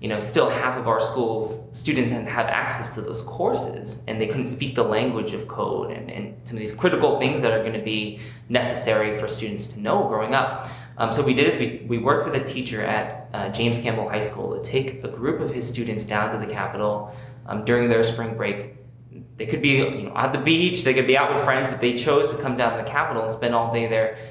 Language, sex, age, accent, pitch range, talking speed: English, male, 20-39, American, 110-125 Hz, 255 wpm